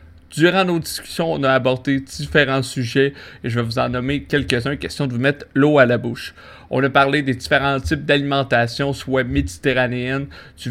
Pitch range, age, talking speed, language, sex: 120-140 Hz, 30-49, 185 wpm, French, male